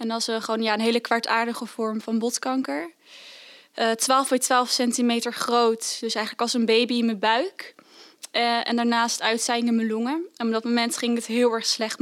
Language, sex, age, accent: Dutch, female, 20-39, Dutch